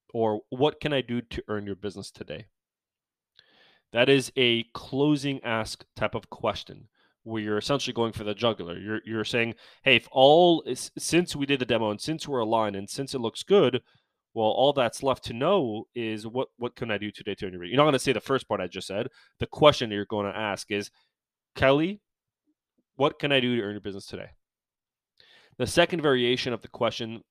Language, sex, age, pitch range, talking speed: English, male, 30-49, 110-135 Hz, 210 wpm